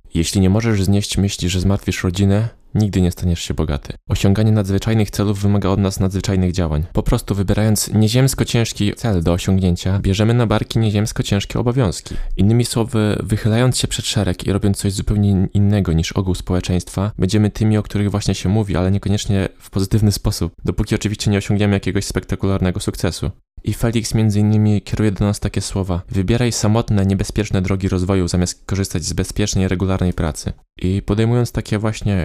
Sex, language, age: male, Polish, 20-39